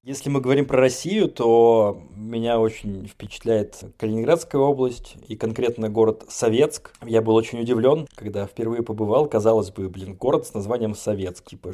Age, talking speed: 20-39, 155 wpm